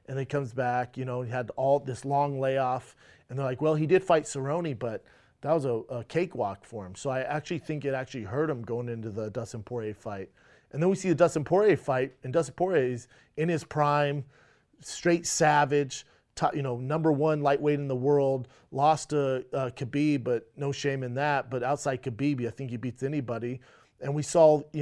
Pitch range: 130-165 Hz